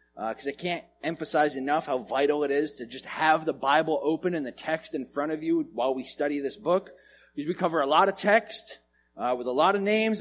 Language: English